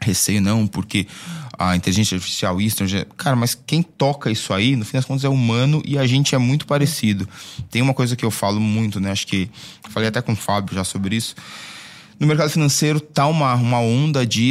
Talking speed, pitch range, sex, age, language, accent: 210 wpm, 105-135 Hz, male, 20-39, Portuguese, Brazilian